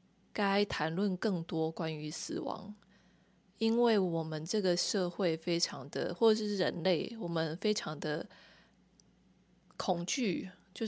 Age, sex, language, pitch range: 20-39, female, Chinese, 175-205 Hz